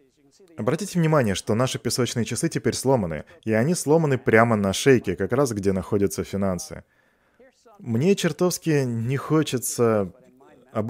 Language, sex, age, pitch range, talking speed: Russian, male, 20-39, 110-145 Hz, 130 wpm